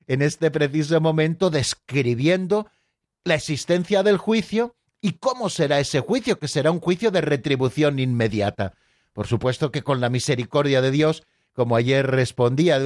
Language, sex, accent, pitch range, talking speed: Spanish, male, Spanish, 130-175 Hz, 155 wpm